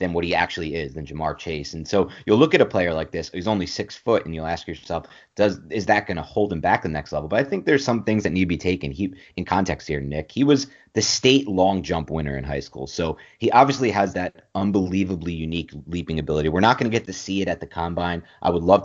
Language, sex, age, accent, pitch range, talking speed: English, male, 30-49, American, 85-100 Hz, 265 wpm